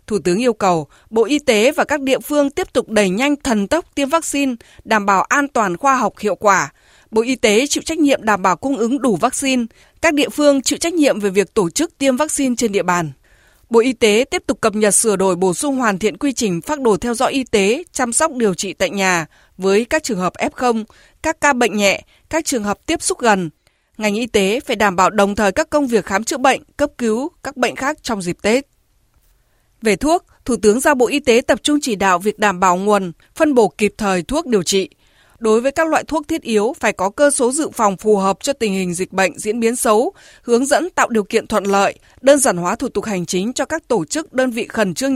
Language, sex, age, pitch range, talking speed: Vietnamese, female, 20-39, 205-280 Hz, 245 wpm